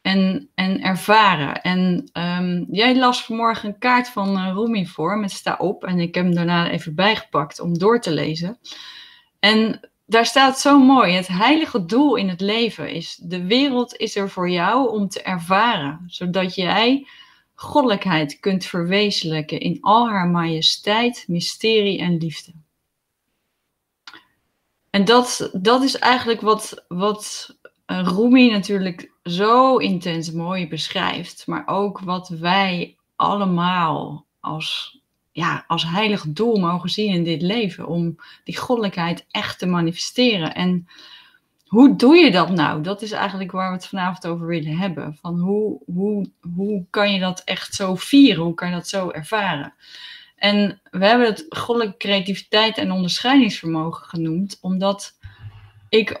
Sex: female